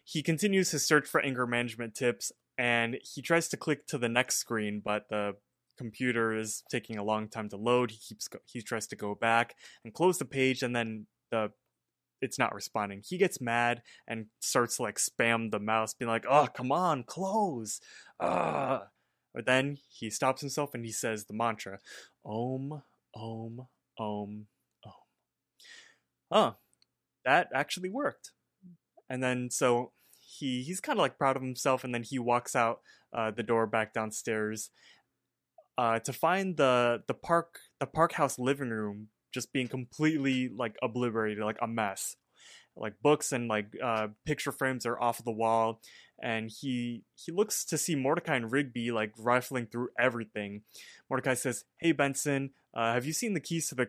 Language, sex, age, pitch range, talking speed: English, male, 20-39, 110-140 Hz, 175 wpm